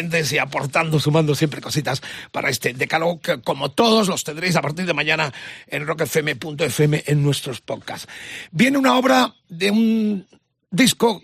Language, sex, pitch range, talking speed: Spanish, male, 145-185 Hz, 150 wpm